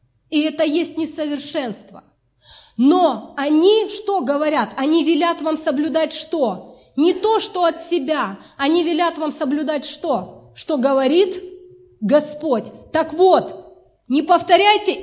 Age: 30-49